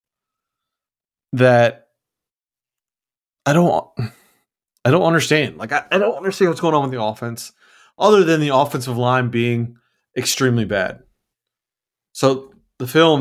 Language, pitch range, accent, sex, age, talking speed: English, 115-145 Hz, American, male, 30-49, 125 wpm